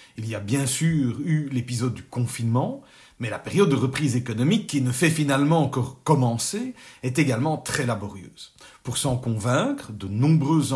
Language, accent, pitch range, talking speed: French, French, 115-165 Hz, 165 wpm